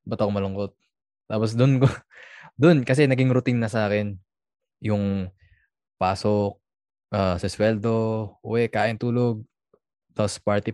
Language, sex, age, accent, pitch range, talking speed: Filipino, male, 20-39, native, 105-120 Hz, 130 wpm